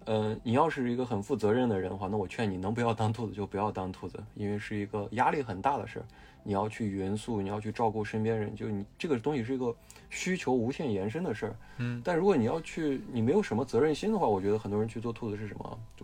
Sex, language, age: male, Chinese, 20-39